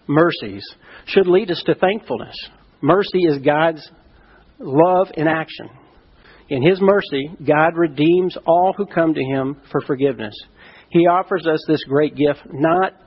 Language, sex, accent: English, male, American